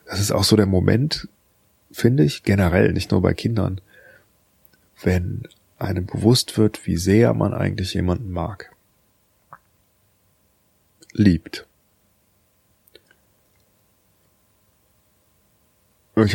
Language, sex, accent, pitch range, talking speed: German, male, German, 95-110 Hz, 90 wpm